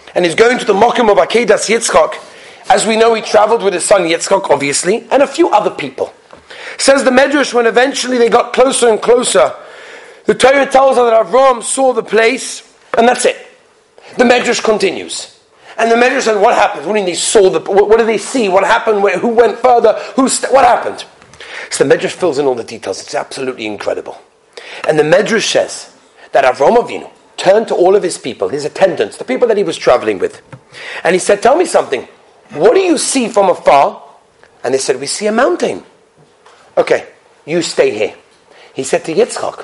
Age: 40-59